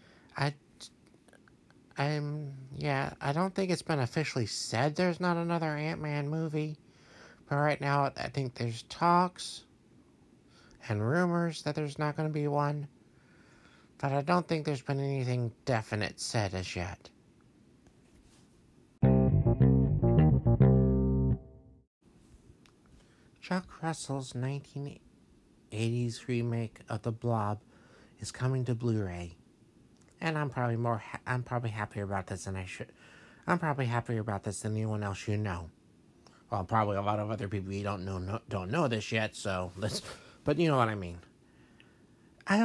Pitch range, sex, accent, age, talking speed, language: 110-155 Hz, male, American, 60-79, 130 wpm, English